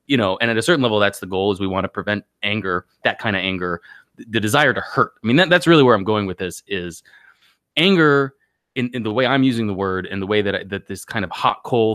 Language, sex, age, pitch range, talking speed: English, male, 20-39, 100-140 Hz, 265 wpm